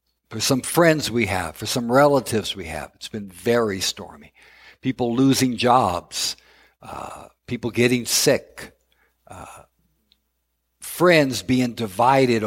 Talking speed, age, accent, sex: 120 wpm, 60-79, American, male